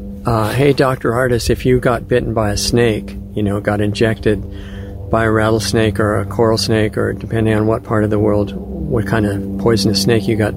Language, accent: English, American